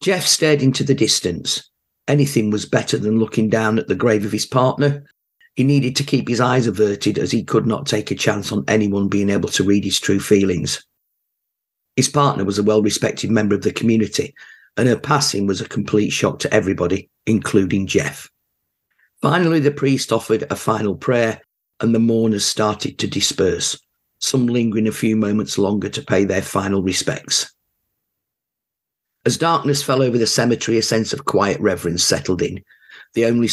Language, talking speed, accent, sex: English, 175 wpm, British, male